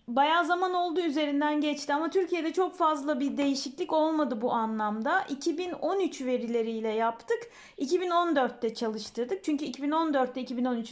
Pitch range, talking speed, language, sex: 250-335 Hz, 120 wpm, Turkish, female